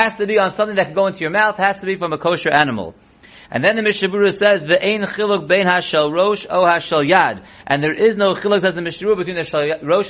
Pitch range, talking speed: 160-205 Hz, 240 wpm